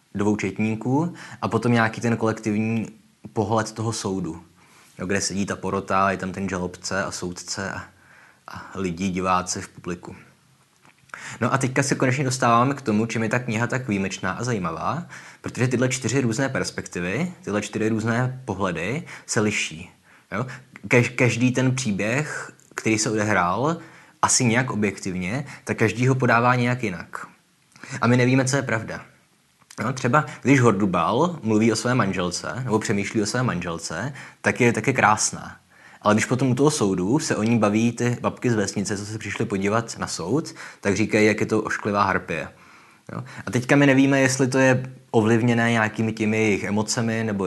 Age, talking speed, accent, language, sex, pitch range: 20-39, 165 wpm, native, Czech, male, 100-125 Hz